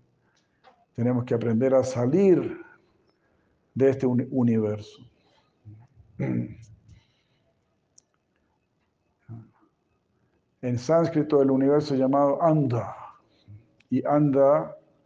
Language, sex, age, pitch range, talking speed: Spanish, male, 60-79, 115-140 Hz, 70 wpm